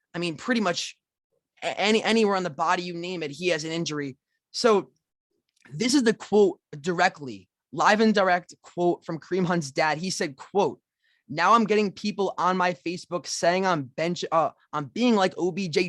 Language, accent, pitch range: English, American, 170-215 Hz